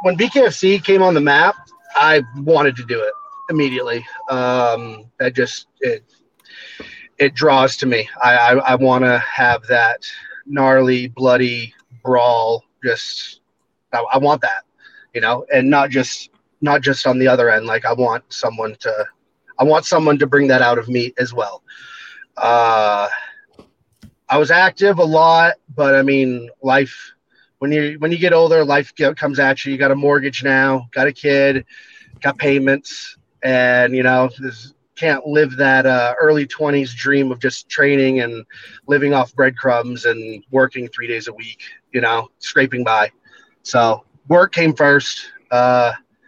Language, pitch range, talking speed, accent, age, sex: English, 125-155 Hz, 165 wpm, American, 30-49, male